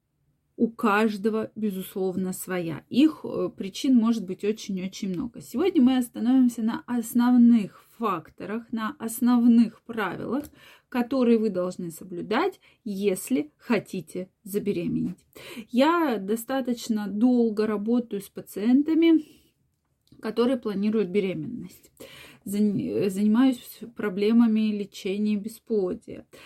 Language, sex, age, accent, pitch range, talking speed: Russian, female, 20-39, native, 210-265 Hz, 90 wpm